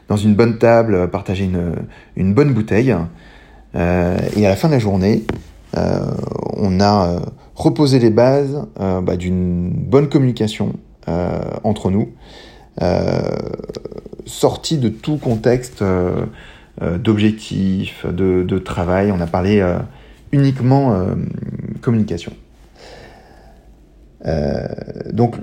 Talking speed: 120 wpm